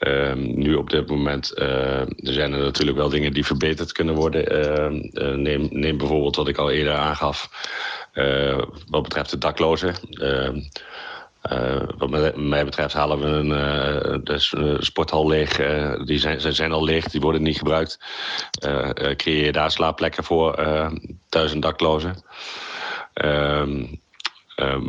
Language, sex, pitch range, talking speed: Dutch, male, 75-80 Hz, 155 wpm